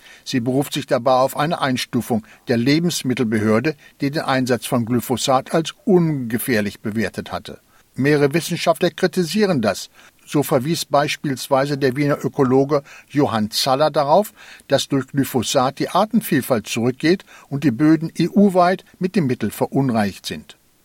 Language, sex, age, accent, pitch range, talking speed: German, male, 60-79, German, 130-170 Hz, 130 wpm